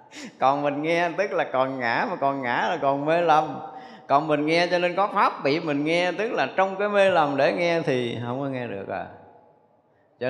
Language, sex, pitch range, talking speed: Vietnamese, male, 120-165 Hz, 225 wpm